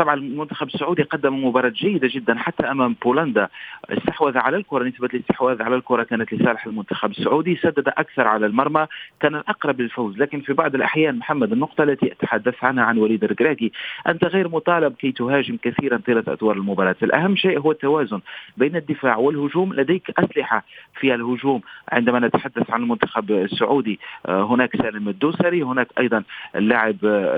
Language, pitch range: Arabic, 115-155 Hz